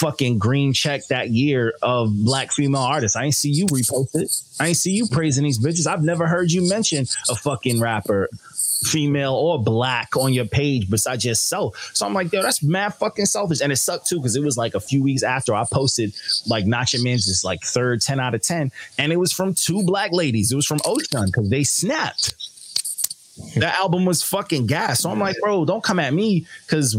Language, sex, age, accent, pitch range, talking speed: English, male, 20-39, American, 115-165 Hz, 220 wpm